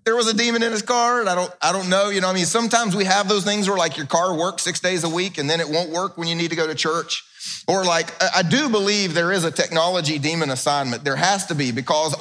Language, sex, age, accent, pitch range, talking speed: English, male, 30-49, American, 140-185 Hz, 290 wpm